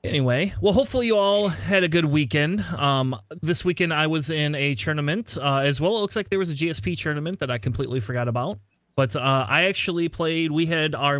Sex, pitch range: male, 135-165 Hz